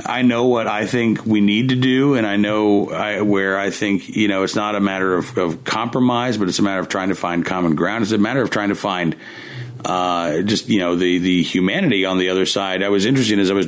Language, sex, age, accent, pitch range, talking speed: English, male, 40-59, American, 95-115 Hz, 260 wpm